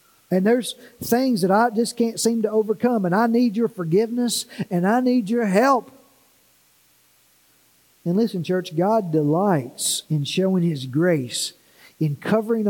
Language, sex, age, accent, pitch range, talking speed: English, male, 50-69, American, 160-235 Hz, 145 wpm